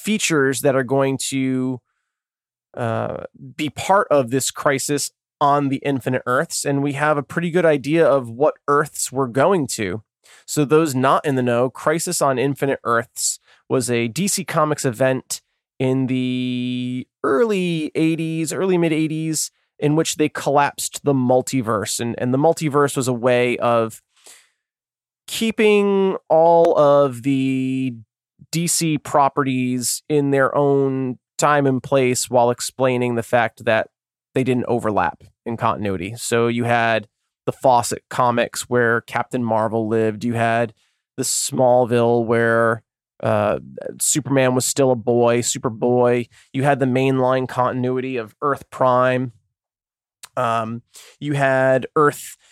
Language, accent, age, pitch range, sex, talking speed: English, American, 20-39, 120-145 Hz, male, 135 wpm